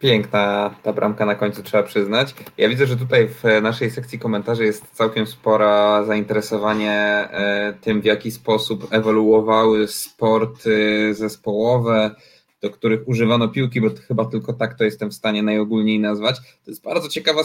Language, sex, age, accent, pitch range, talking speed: Polish, male, 20-39, native, 110-125 Hz, 150 wpm